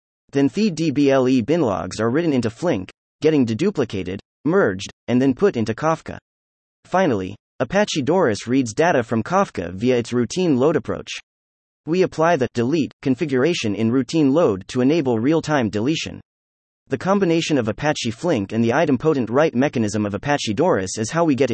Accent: American